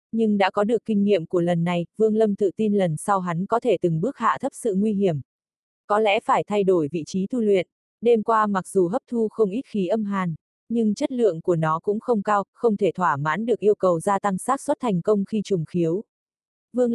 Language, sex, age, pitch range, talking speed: Vietnamese, female, 20-39, 180-225 Hz, 250 wpm